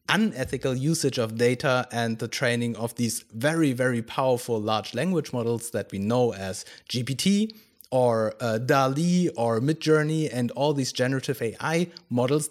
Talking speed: 150 wpm